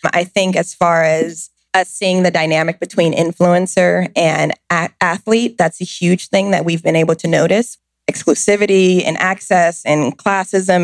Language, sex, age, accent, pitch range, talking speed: English, female, 20-39, American, 165-185 Hz, 155 wpm